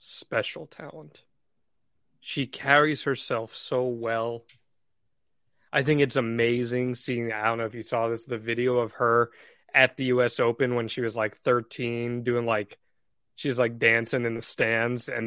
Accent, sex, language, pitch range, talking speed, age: American, male, English, 115-135 Hz, 160 wpm, 30-49